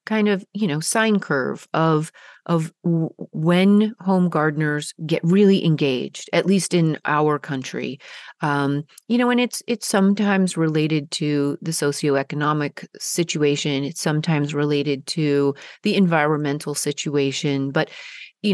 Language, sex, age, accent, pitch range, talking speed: English, female, 30-49, American, 150-185 Hz, 135 wpm